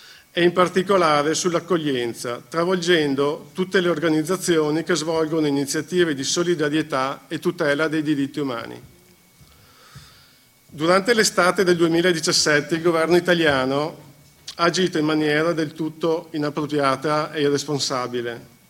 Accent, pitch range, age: native, 145-175 Hz, 50-69